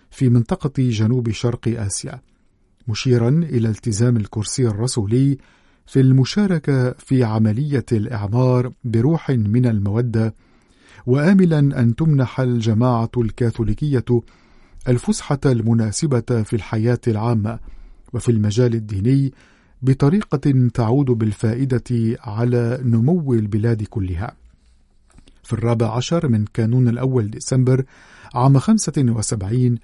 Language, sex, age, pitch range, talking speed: Arabic, male, 50-69, 115-130 Hz, 95 wpm